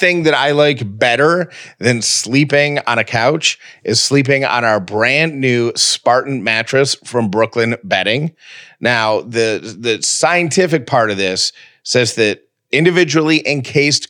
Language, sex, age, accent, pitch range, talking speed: English, male, 40-59, American, 115-150 Hz, 135 wpm